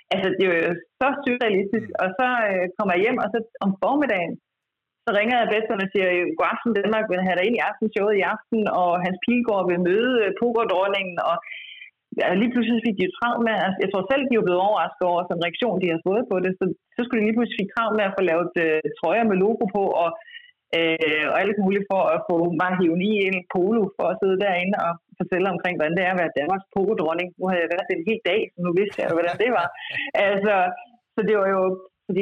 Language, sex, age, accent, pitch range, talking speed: Danish, female, 30-49, native, 175-220 Hz, 240 wpm